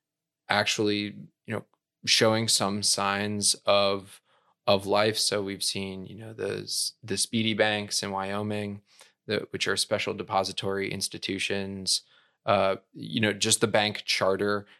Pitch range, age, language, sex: 100-110 Hz, 20-39, English, male